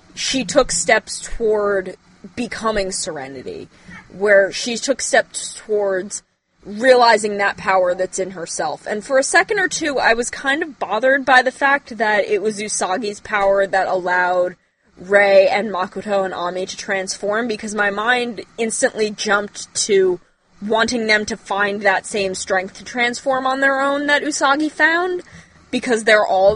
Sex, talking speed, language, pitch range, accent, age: female, 155 wpm, English, 195-245 Hz, American, 20-39